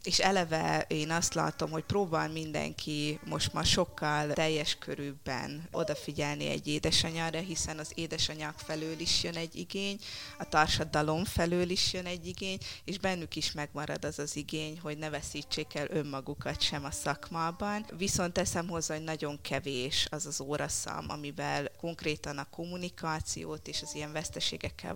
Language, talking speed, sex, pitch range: Hungarian, 150 wpm, female, 145-165 Hz